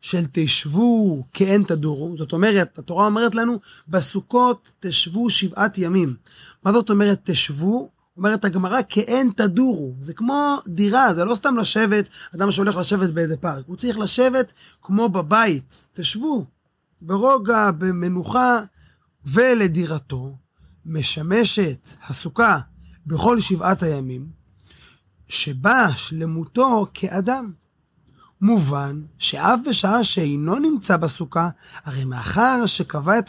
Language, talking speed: Hebrew, 110 wpm